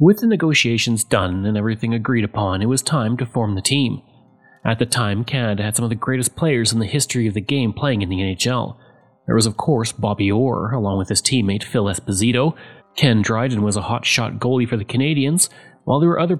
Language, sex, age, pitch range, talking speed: English, male, 30-49, 110-135 Hz, 220 wpm